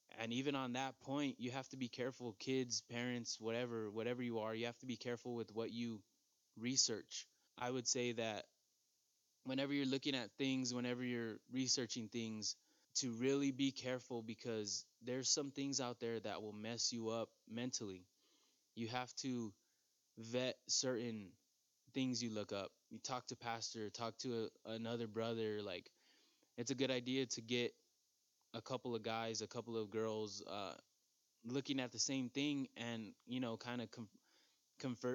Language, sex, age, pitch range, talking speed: English, male, 20-39, 110-130 Hz, 165 wpm